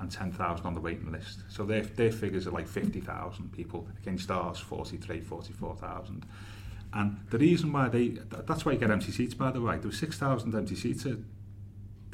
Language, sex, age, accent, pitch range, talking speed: English, male, 30-49, British, 100-115 Hz, 195 wpm